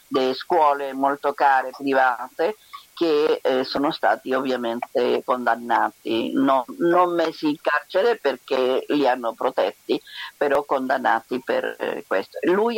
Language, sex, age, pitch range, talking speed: Italian, female, 50-69, 130-170 Hz, 115 wpm